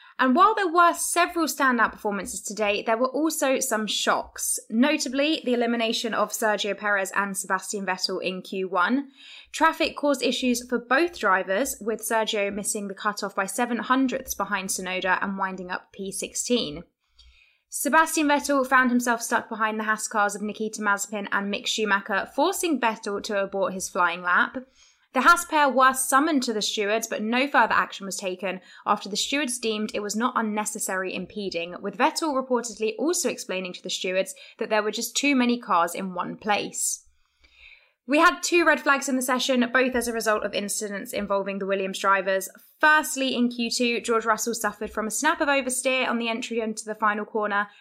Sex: female